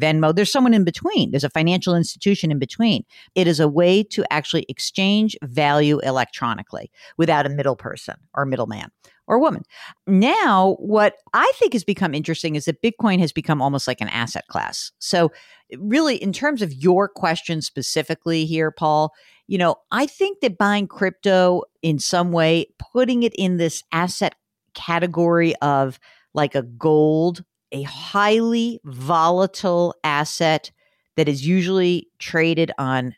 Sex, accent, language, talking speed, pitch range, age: female, American, English, 150 wpm, 140-190 Hz, 50-69